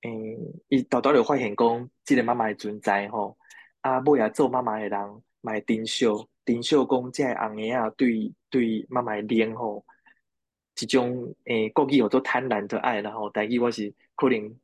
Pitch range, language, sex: 110-130 Hz, Chinese, male